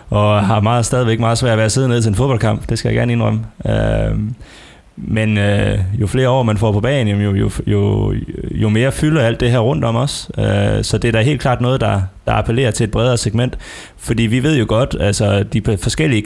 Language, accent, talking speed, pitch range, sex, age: Danish, native, 235 wpm, 105-120 Hz, male, 20-39